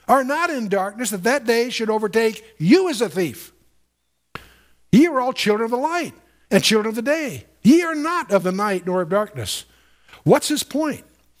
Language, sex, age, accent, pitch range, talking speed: English, male, 60-79, American, 150-235 Hz, 195 wpm